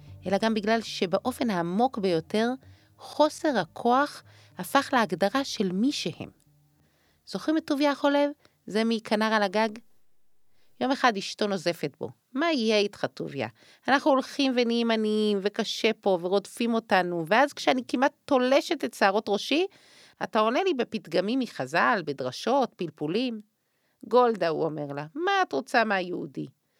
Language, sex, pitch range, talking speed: Hebrew, female, 175-255 Hz, 135 wpm